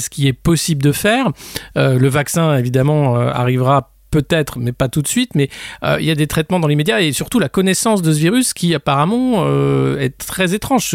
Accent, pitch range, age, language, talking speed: French, 130-175 Hz, 50-69, French, 220 wpm